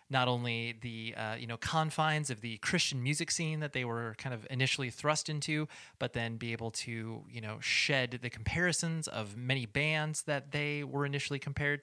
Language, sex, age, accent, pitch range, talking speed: English, male, 30-49, American, 115-145 Hz, 195 wpm